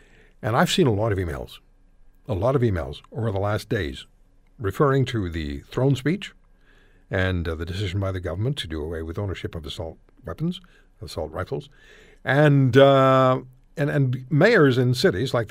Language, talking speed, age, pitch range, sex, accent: English, 175 wpm, 60-79, 100-145 Hz, male, American